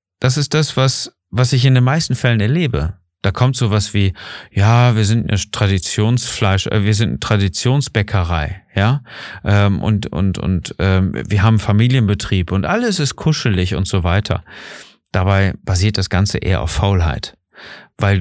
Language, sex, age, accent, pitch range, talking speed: German, male, 40-59, German, 90-115 Hz, 155 wpm